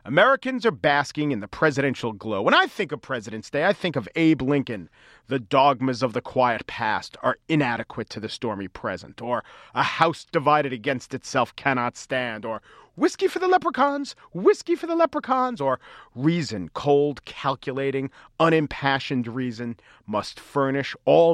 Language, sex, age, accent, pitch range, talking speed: English, male, 40-59, American, 130-175 Hz, 155 wpm